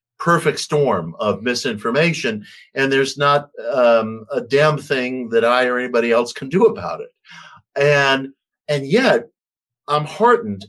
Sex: male